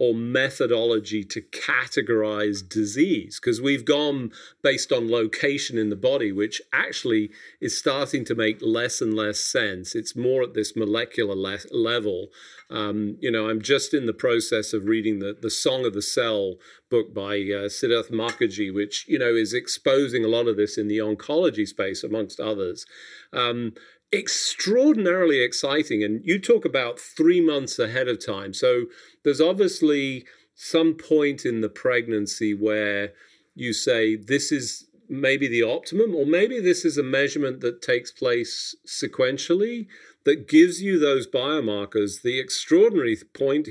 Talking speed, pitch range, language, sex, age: 145 wpm, 105-150 Hz, English, male, 40-59